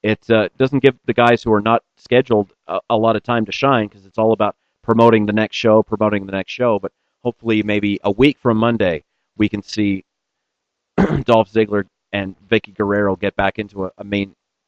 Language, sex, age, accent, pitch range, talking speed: English, male, 40-59, American, 105-125 Hz, 205 wpm